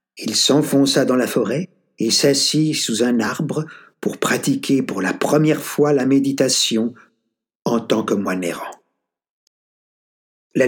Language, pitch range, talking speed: French, 115-150 Hz, 135 wpm